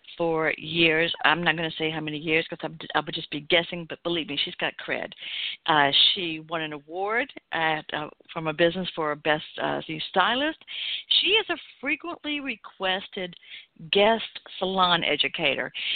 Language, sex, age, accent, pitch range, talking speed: English, female, 60-79, American, 160-210 Hz, 170 wpm